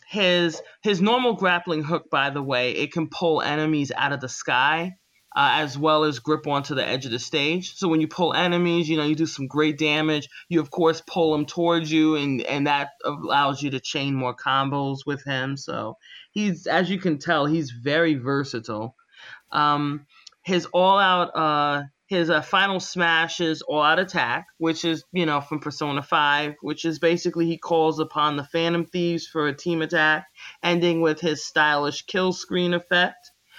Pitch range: 145-175 Hz